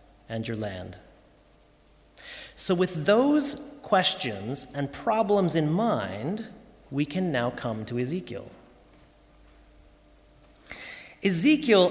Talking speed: 90 wpm